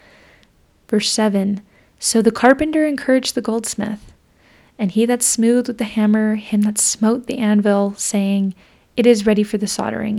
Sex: female